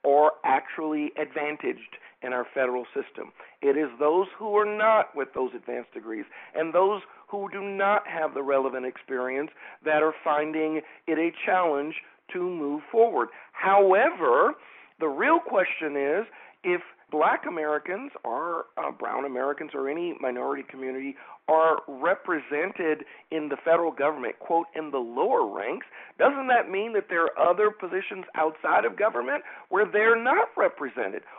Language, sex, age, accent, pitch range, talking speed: English, male, 50-69, American, 155-220 Hz, 145 wpm